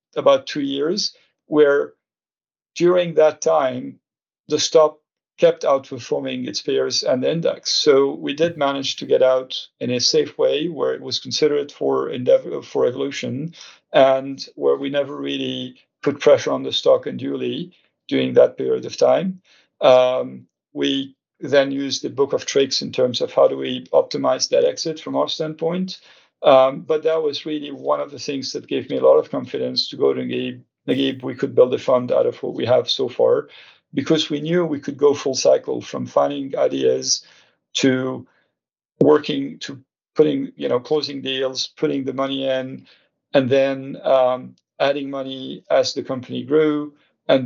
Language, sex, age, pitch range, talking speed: English, male, 50-69, 130-175 Hz, 175 wpm